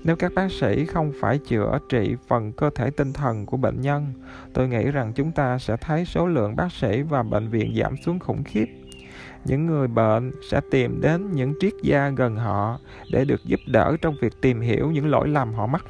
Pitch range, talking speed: 115-155 Hz, 220 wpm